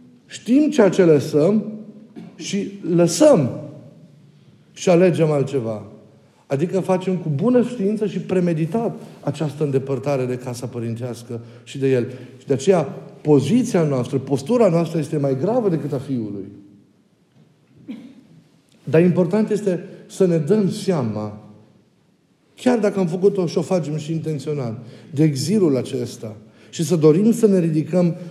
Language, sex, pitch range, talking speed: Romanian, male, 140-195 Hz, 130 wpm